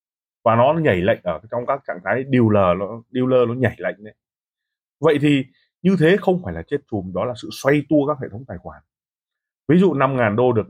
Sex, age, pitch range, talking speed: male, 20-39, 110-155 Hz, 225 wpm